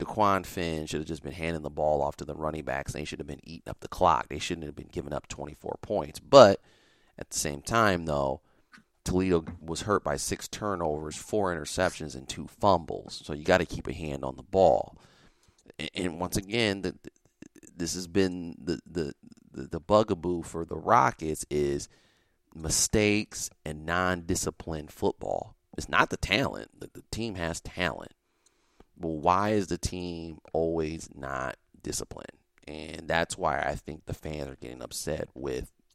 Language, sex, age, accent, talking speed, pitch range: English, male, 30-49, American, 170 wpm, 75-95 Hz